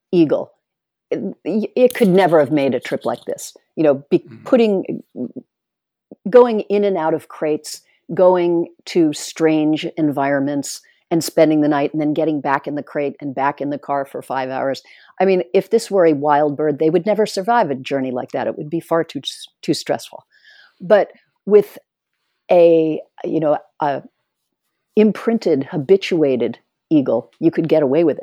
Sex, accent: female, American